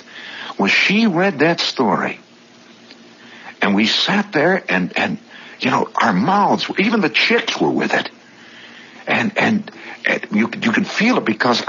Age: 60-79